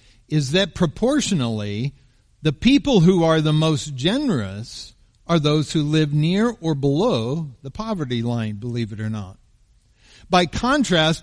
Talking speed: 140 wpm